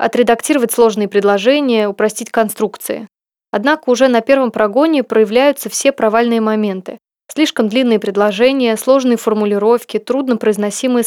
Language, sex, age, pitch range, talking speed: Russian, female, 20-39, 215-255 Hz, 110 wpm